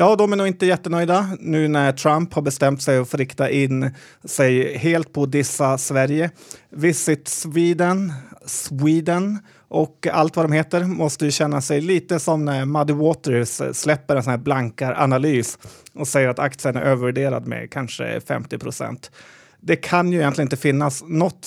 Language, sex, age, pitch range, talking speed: Swedish, male, 30-49, 135-160 Hz, 165 wpm